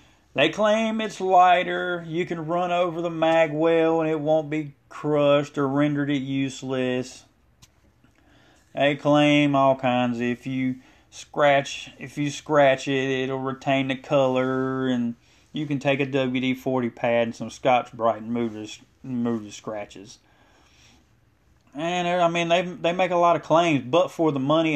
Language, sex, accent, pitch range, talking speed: English, male, American, 115-145 Hz, 155 wpm